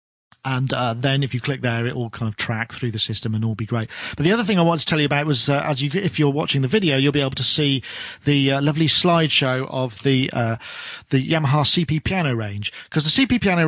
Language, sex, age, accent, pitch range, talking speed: English, male, 40-59, British, 130-170 Hz, 260 wpm